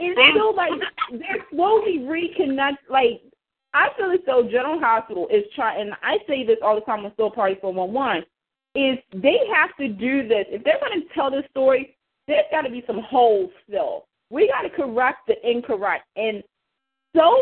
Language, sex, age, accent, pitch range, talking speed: English, female, 30-49, American, 225-320 Hz, 190 wpm